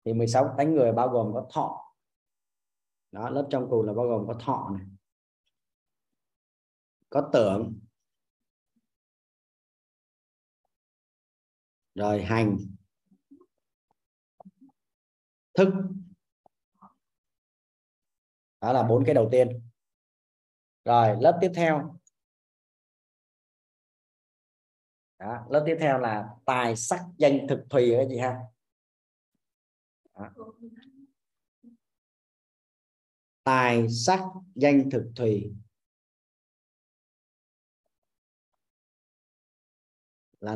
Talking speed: 80 wpm